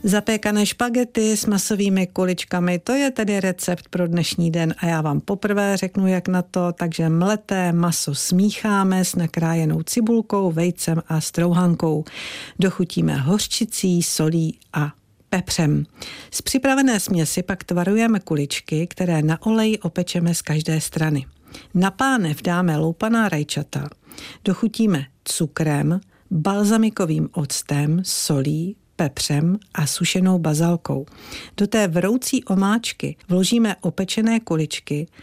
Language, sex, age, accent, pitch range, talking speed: Czech, female, 50-69, native, 160-205 Hz, 115 wpm